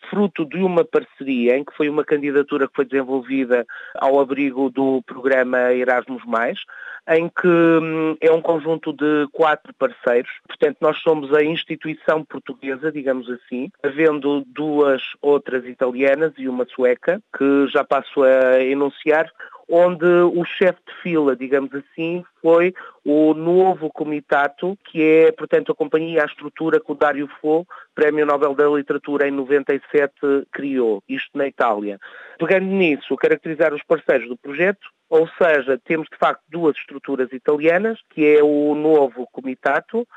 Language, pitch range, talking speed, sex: Portuguese, 135-165 Hz, 145 wpm, male